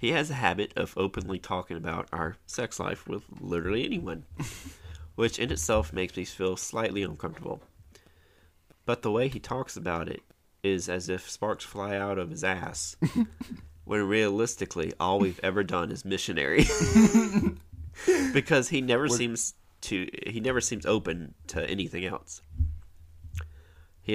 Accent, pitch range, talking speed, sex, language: American, 80-105 Hz, 145 wpm, male, English